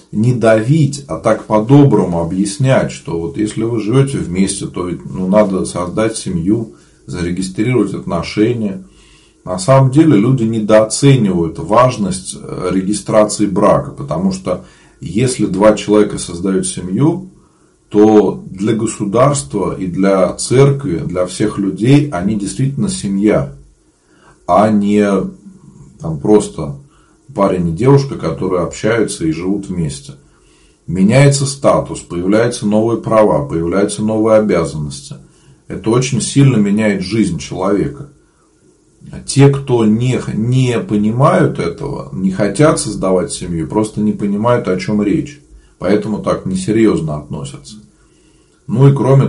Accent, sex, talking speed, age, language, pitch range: native, male, 115 wpm, 40-59, Russian, 95-135 Hz